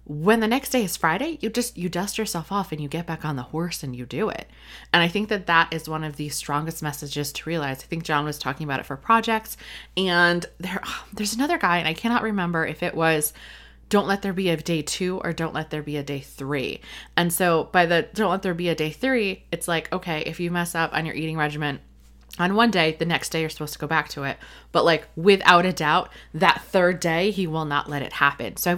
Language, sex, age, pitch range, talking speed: English, female, 20-39, 150-185 Hz, 255 wpm